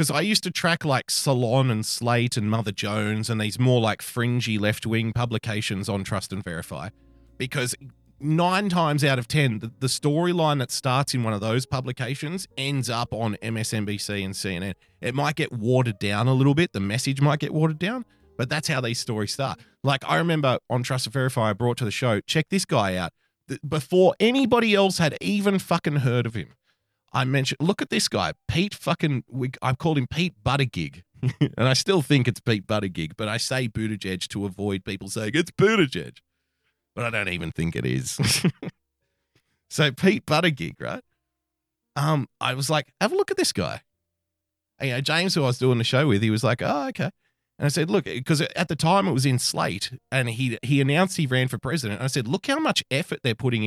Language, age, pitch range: English, 30-49, 110-150 Hz